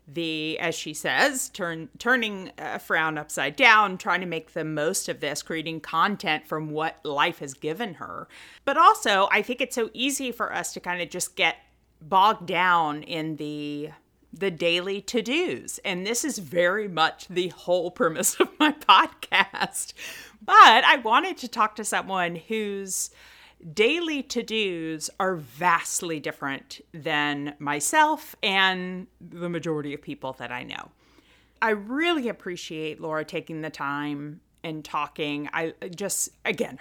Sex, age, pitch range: female, 40-59, 150-215 Hz